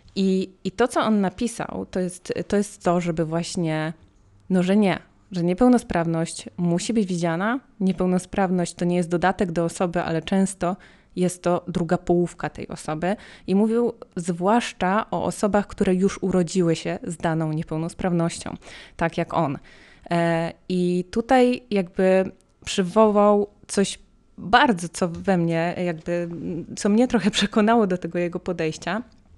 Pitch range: 170-200 Hz